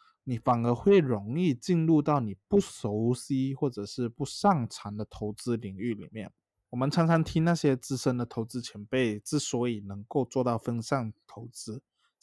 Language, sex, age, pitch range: Chinese, male, 20-39, 110-135 Hz